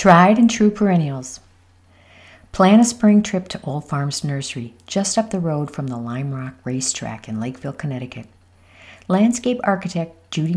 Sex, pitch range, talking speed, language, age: female, 95-155 Hz, 155 wpm, English, 50-69